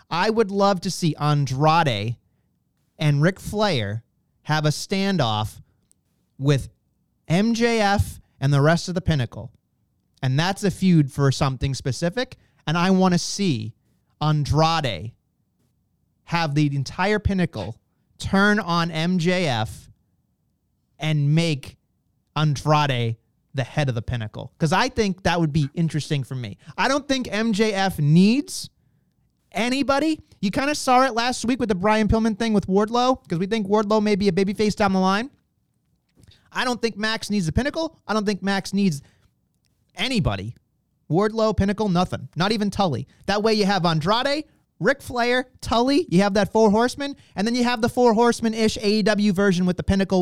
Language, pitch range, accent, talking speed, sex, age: English, 140-215 Hz, American, 160 wpm, male, 30-49